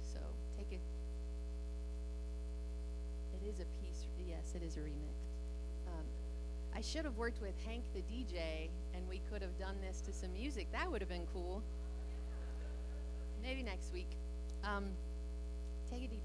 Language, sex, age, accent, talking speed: English, female, 30-49, American, 145 wpm